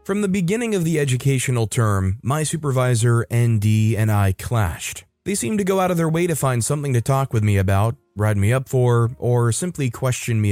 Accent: American